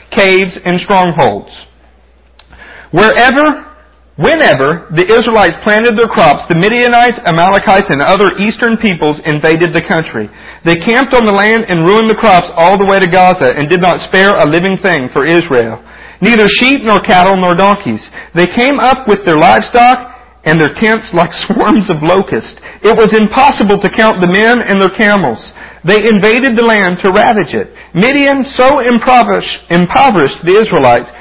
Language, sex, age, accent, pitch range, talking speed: English, male, 50-69, American, 140-230 Hz, 165 wpm